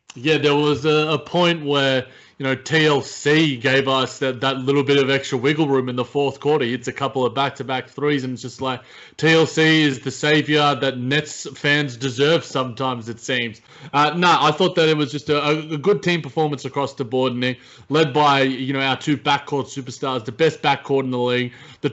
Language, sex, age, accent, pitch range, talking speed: English, male, 20-39, Australian, 130-155 Hz, 215 wpm